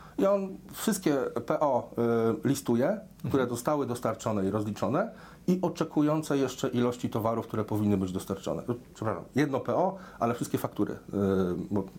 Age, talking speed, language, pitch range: 40-59, 130 wpm, Polish, 105-150 Hz